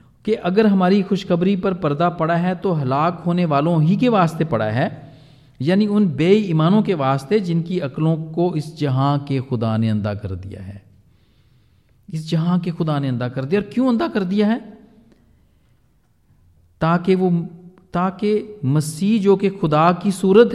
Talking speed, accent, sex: 165 wpm, native, male